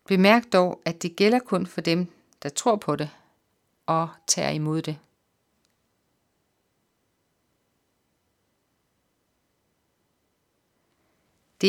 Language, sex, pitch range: Danish, female, 155-185 Hz